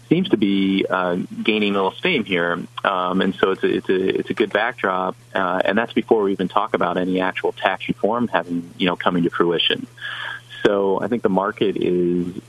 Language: English